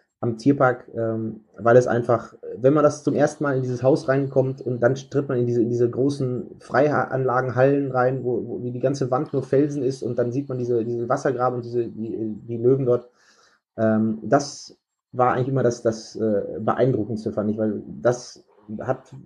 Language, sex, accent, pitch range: German, male, German, 115-135 Hz